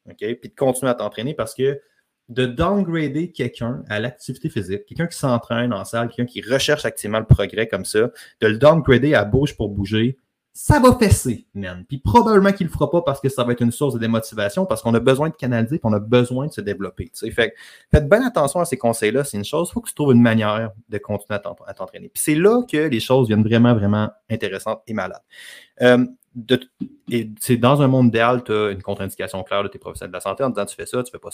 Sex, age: male, 30-49